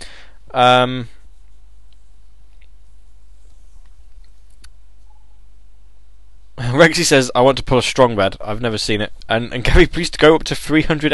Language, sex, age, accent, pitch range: English, male, 10-29, British, 95-125 Hz